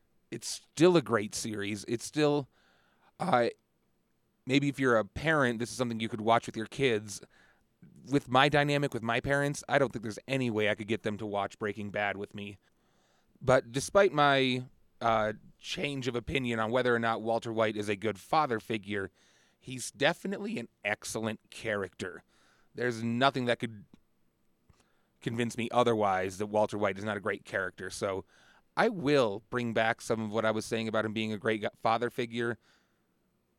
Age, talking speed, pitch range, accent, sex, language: 30-49, 180 wpm, 105-125 Hz, American, male, English